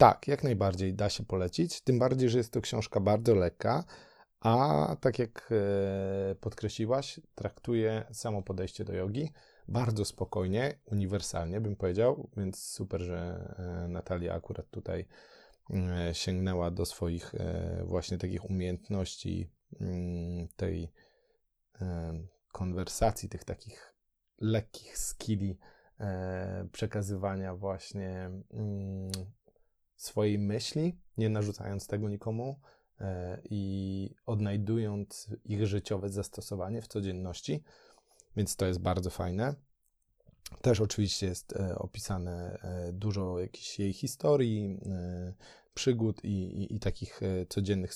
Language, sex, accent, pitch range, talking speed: Polish, male, native, 90-110 Hz, 100 wpm